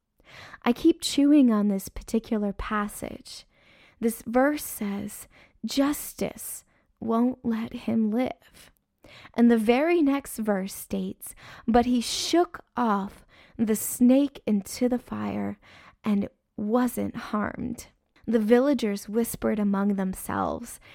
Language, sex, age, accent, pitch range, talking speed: English, female, 20-39, American, 215-275 Hz, 110 wpm